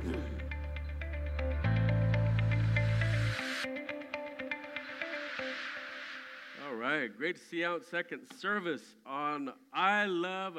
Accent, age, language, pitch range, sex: American, 50-69, English, 140-210 Hz, male